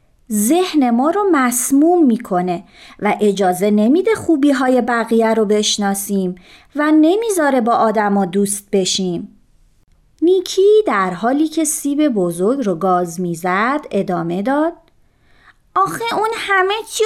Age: 30-49